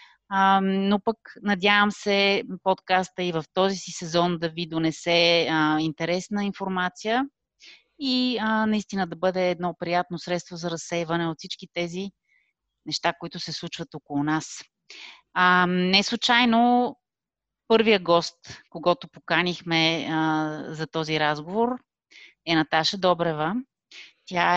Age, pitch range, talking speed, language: 30-49, 170-200 Hz, 110 wpm, Bulgarian